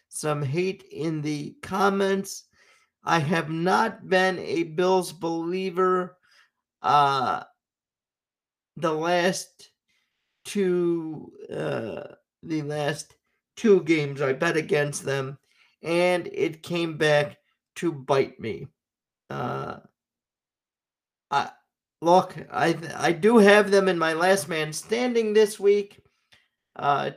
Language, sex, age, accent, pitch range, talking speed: English, male, 50-69, American, 155-190 Hz, 105 wpm